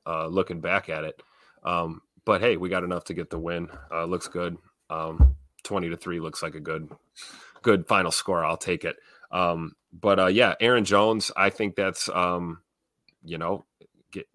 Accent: American